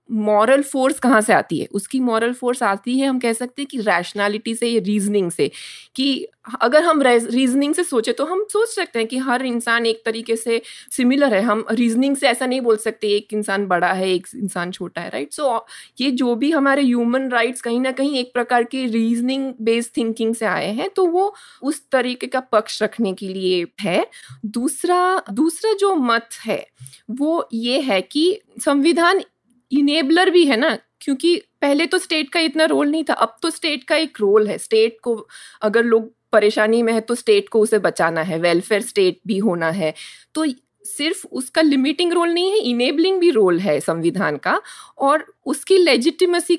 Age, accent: 20-39, native